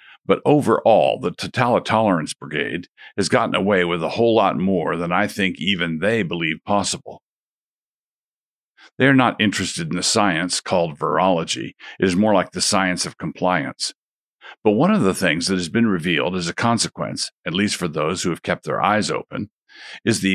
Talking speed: 180 wpm